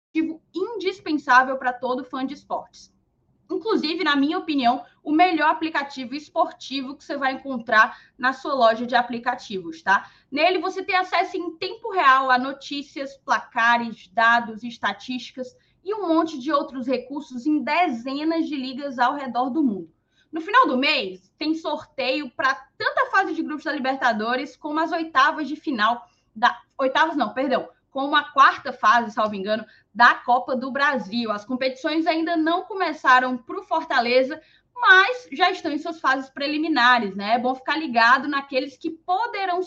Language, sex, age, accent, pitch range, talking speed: Portuguese, female, 20-39, Brazilian, 250-330 Hz, 160 wpm